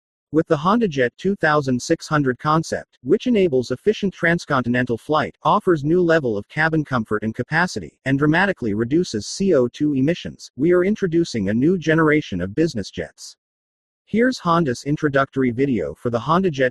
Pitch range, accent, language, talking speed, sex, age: 125-165 Hz, American, English, 140 wpm, male, 40-59